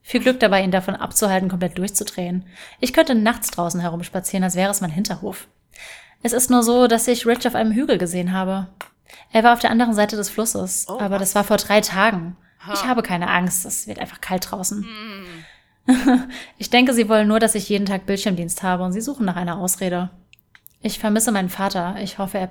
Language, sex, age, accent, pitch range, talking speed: German, female, 30-49, German, 185-215 Hz, 205 wpm